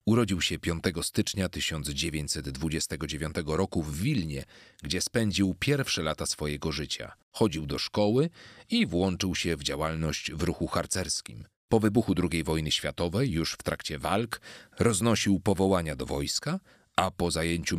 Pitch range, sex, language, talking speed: 80-100 Hz, male, Polish, 140 wpm